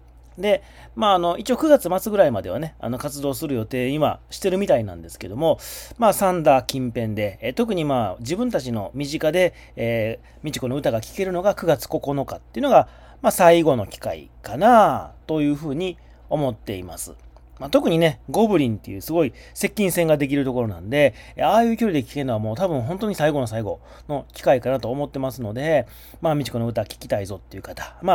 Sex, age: male, 40-59